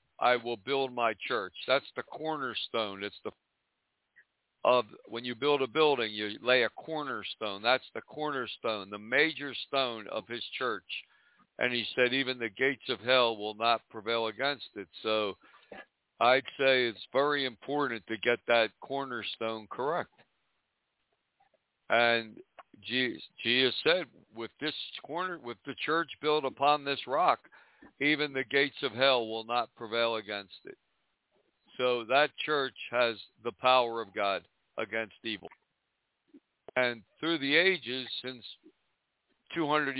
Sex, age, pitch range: male, 60-79, 115-140 Hz